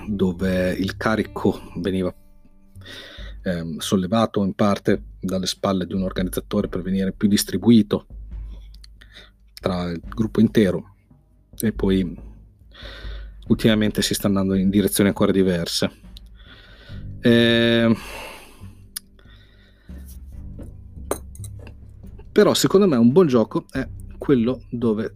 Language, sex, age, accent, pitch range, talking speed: Italian, male, 40-59, native, 95-115 Hz, 100 wpm